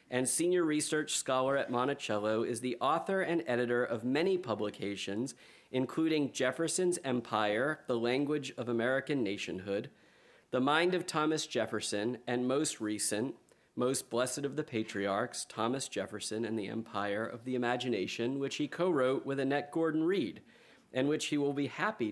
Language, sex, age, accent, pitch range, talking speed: English, male, 40-59, American, 115-145 Hz, 155 wpm